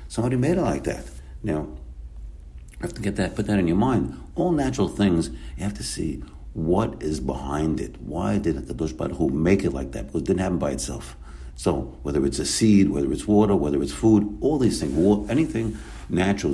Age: 60-79